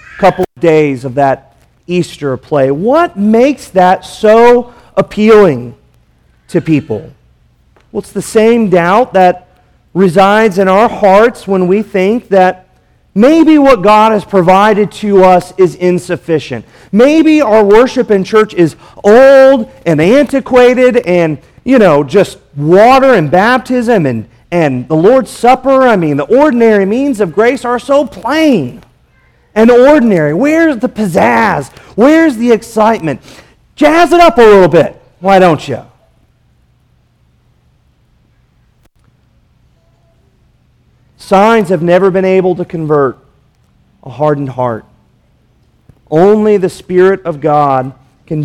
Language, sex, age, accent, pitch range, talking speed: English, male, 40-59, American, 155-235 Hz, 125 wpm